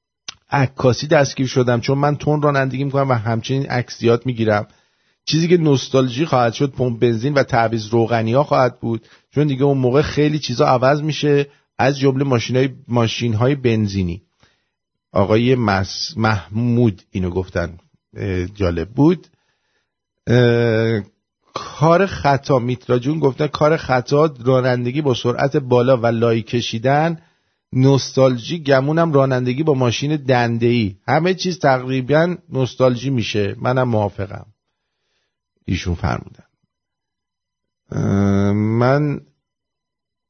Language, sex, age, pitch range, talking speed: English, male, 50-69, 115-145 Hz, 110 wpm